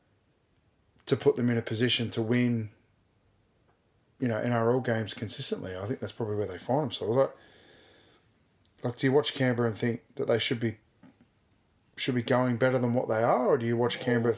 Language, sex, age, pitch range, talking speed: English, male, 20-39, 115-130 Hz, 195 wpm